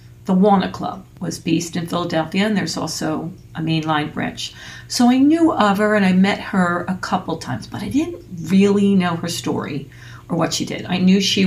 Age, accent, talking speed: 40-59, American, 205 wpm